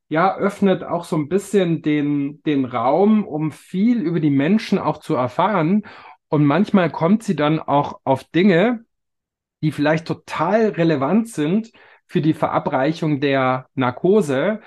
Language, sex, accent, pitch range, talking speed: German, male, German, 130-170 Hz, 145 wpm